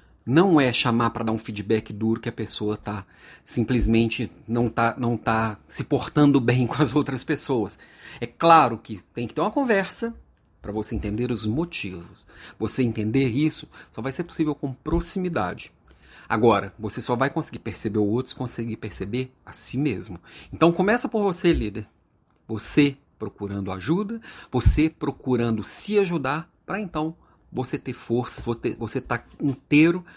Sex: male